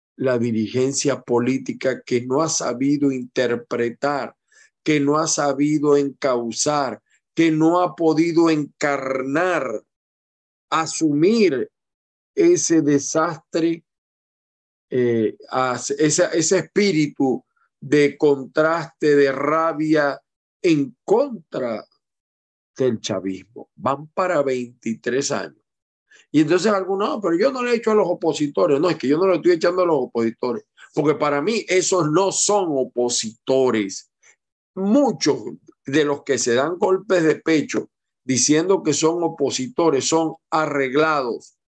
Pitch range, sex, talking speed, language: 130-180 Hz, male, 120 wpm, Spanish